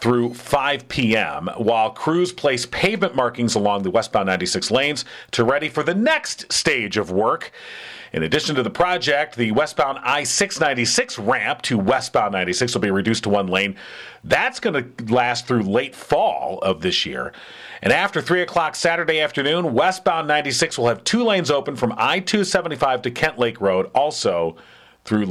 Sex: male